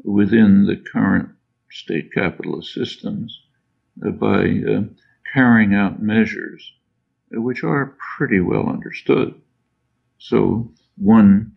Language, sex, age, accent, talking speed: English, male, 60-79, American, 105 wpm